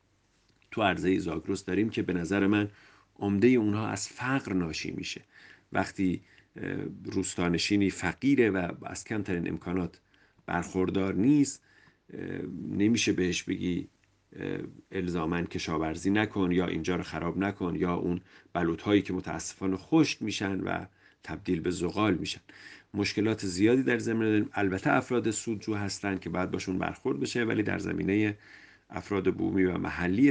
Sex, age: male, 50-69